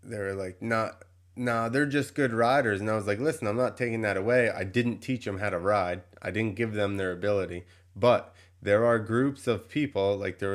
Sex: male